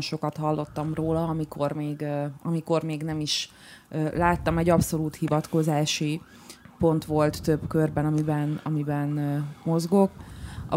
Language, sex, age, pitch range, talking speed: Hungarian, female, 20-39, 160-185 Hz, 115 wpm